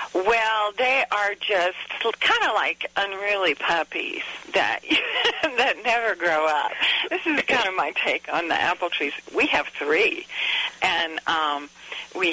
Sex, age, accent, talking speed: female, 60-79, American, 145 wpm